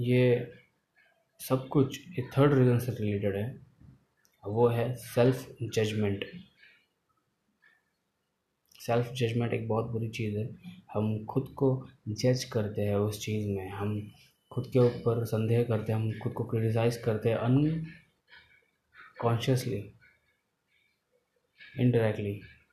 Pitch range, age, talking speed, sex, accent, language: 105-125 Hz, 20-39, 120 wpm, male, native, Hindi